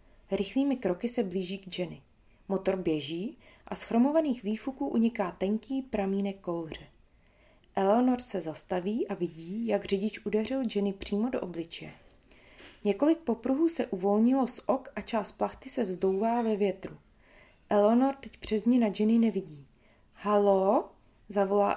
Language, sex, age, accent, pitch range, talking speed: Czech, female, 30-49, native, 190-240 Hz, 140 wpm